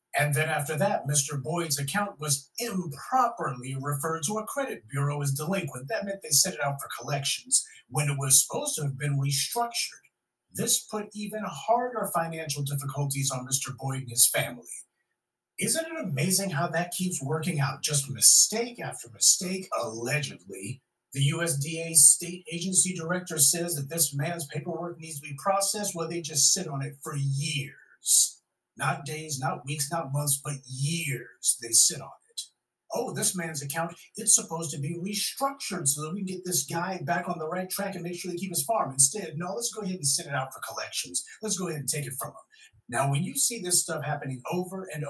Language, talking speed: English, 195 wpm